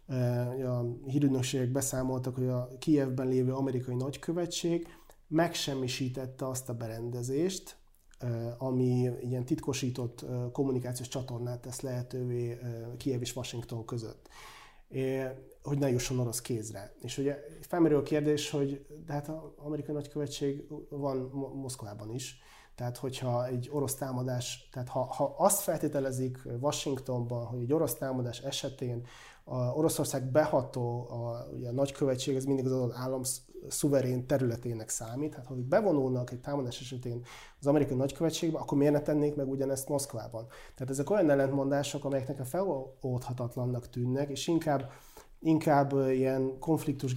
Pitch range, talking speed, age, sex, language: 125-145 Hz, 130 wpm, 30-49, male, Hungarian